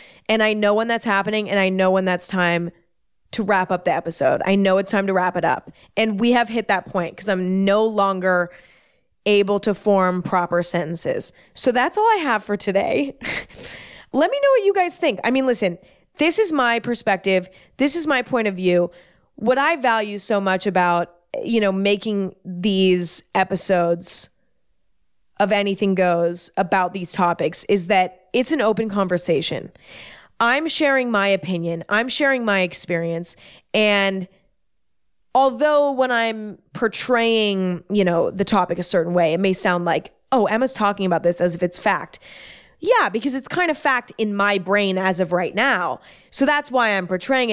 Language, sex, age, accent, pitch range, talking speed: English, female, 20-39, American, 185-235 Hz, 180 wpm